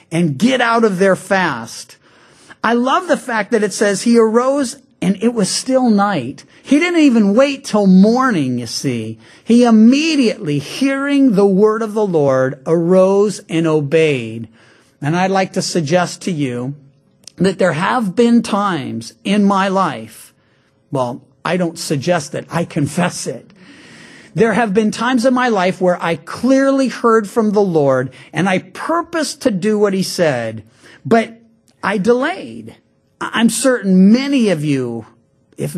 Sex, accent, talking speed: male, American, 155 wpm